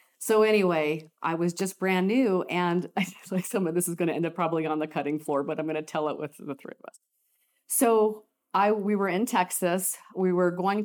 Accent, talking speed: American, 245 wpm